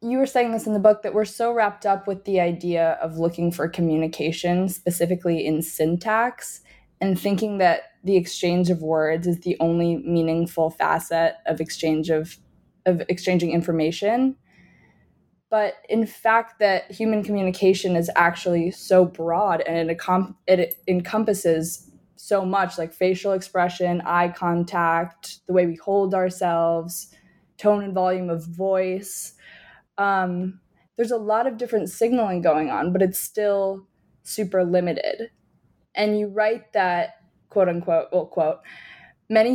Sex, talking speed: female, 145 wpm